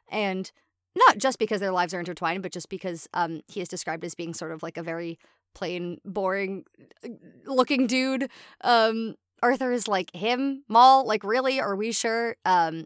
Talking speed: 175 wpm